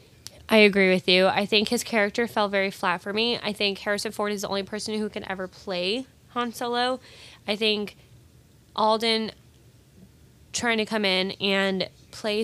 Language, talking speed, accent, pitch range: English, 175 wpm, American, 190-220 Hz